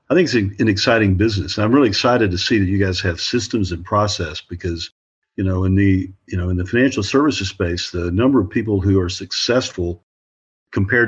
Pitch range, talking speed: 90-110 Hz, 210 wpm